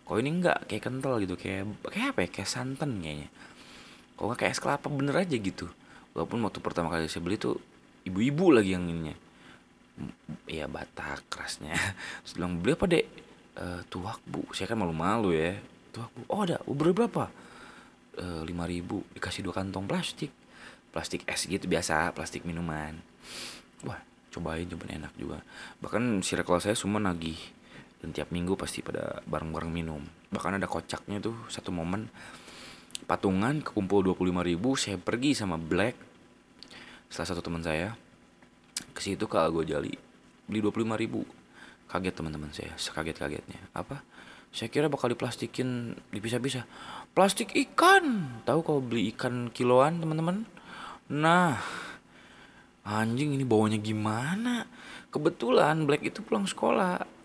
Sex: male